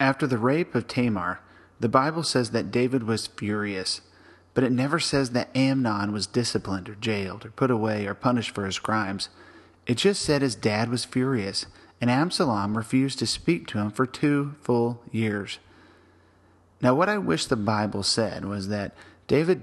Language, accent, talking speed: English, American, 175 wpm